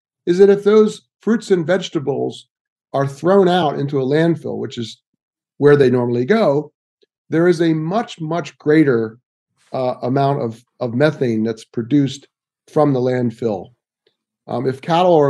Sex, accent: male, American